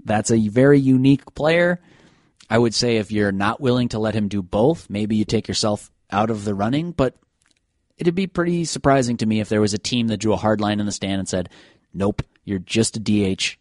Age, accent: 30-49, American